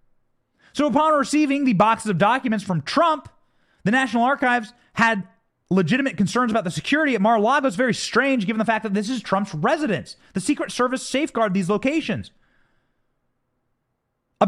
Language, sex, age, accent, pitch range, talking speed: English, male, 30-49, American, 165-235 Hz, 160 wpm